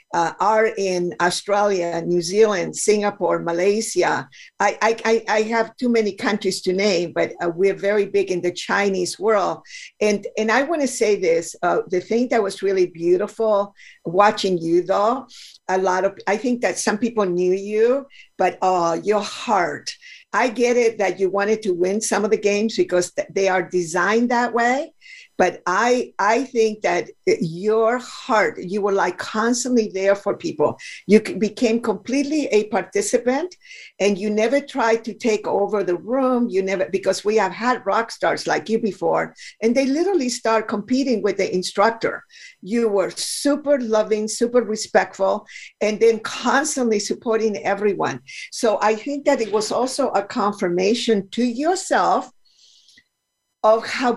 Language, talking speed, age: English, 160 wpm, 50-69